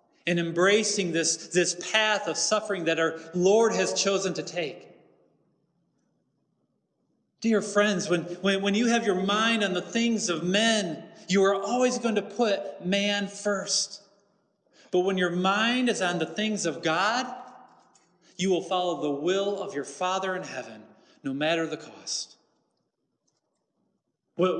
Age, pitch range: 40-59, 170-210 Hz